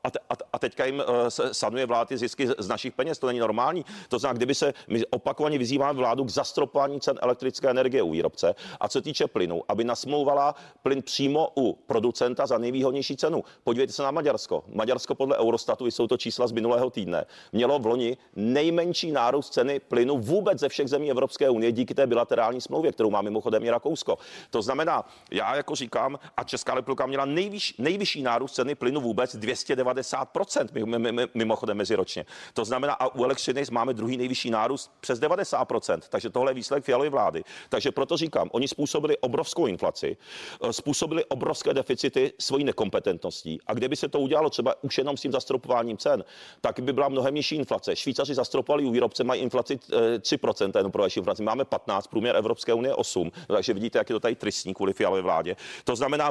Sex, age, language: male, 40-59, Czech